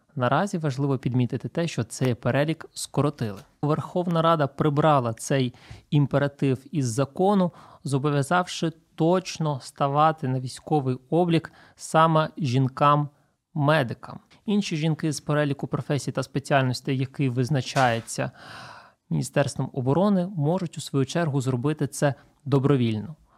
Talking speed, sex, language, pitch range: 105 wpm, male, Ukrainian, 130-160 Hz